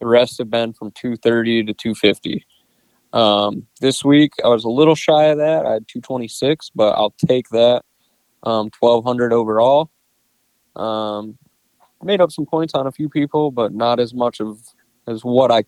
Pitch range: 110-125 Hz